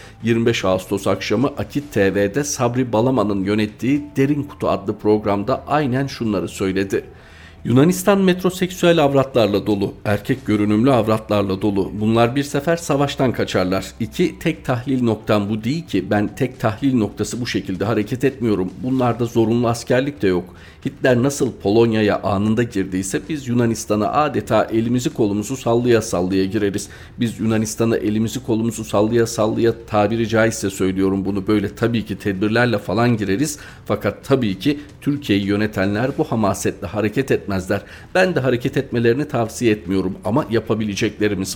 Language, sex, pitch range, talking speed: Turkish, male, 100-130 Hz, 135 wpm